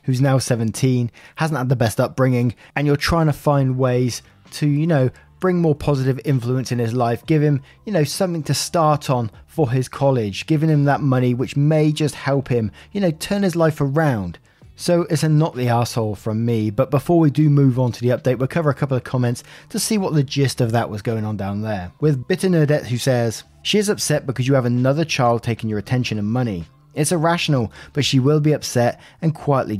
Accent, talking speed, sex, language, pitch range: British, 225 wpm, male, English, 120-150 Hz